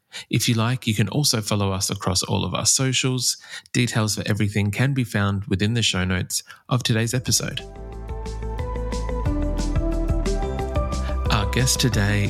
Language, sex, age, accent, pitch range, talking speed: English, male, 20-39, Australian, 100-115 Hz, 140 wpm